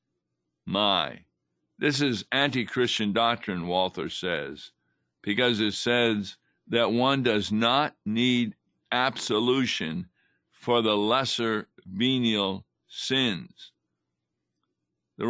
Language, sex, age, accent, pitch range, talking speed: English, male, 60-79, American, 90-125 Hz, 85 wpm